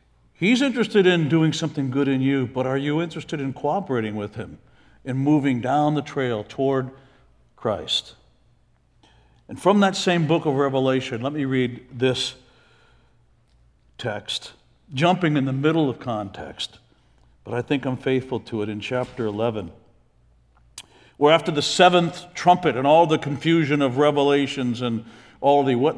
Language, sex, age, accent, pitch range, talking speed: English, male, 60-79, American, 120-155 Hz, 150 wpm